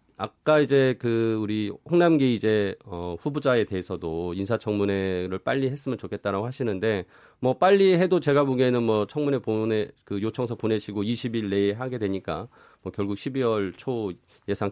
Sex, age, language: male, 40-59, Korean